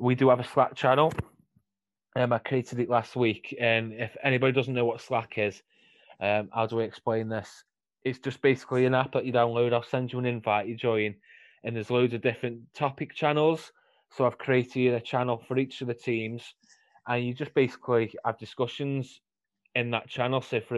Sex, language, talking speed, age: male, English, 200 wpm, 20-39